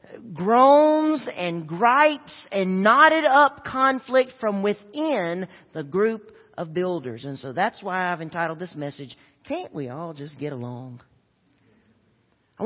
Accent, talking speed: American, 135 wpm